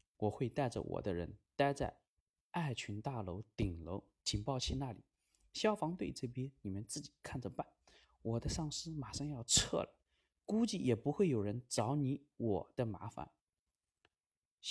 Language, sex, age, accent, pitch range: Chinese, male, 20-39, native, 95-140 Hz